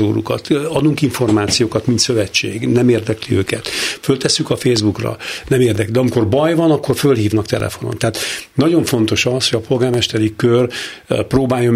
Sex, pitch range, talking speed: male, 110-130 Hz, 145 wpm